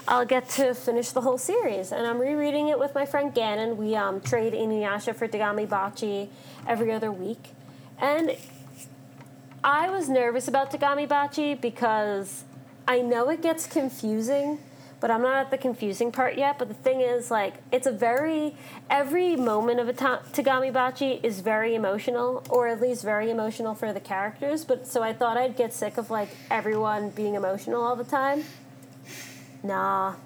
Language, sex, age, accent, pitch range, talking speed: English, female, 30-49, American, 210-265 Hz, 170 wpm